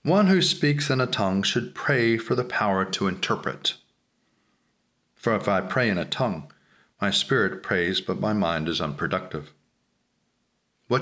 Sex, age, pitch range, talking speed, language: male, 40-59, 100-120 Hz, 160 wpm, English